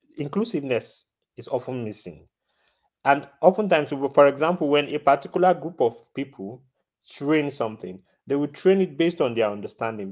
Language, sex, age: Romanian, male, 40-59